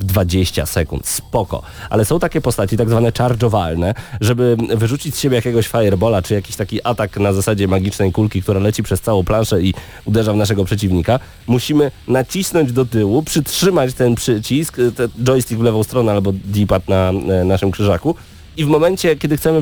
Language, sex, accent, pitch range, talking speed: Polish, male, native, 110-150 Hz, 170 wpm